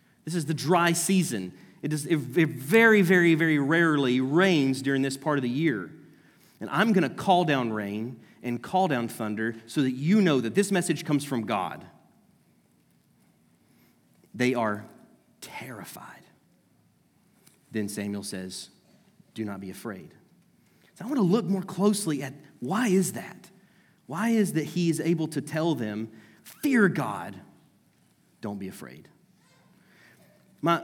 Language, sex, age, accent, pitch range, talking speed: English, male, 30-49, American, 140-190 Hz, 150 wpm